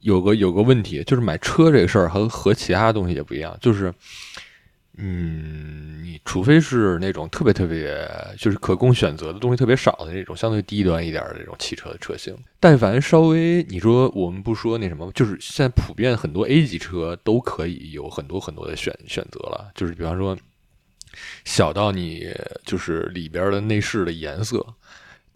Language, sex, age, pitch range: Chinese, male, 20-39, 90-110 Hz